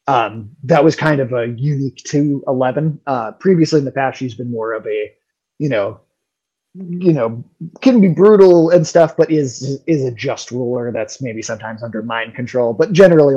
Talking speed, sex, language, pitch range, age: 190 wpm, male, English, 120-160 Hz, 20-39